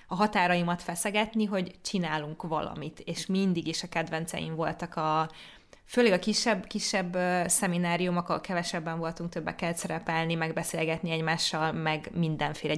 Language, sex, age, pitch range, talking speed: Hungarian, female, 20-39, 160-180 Hz, 120 wpm